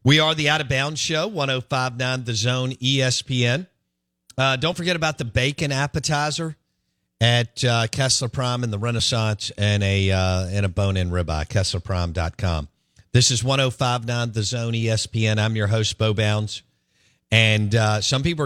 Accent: American